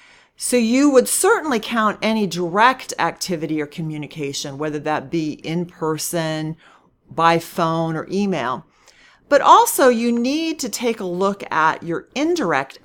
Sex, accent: female, American